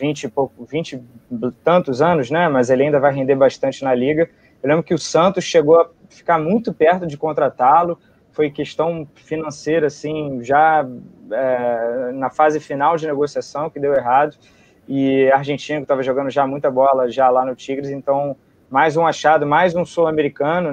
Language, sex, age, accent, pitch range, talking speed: Portuguese, male, 20-39, Brazilian, 135-160 Hz, 175 wpm